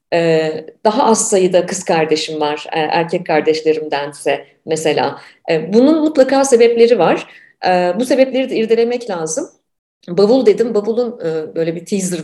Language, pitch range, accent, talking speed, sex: Turkish, 170-245 Hz, native, 120 wpm, female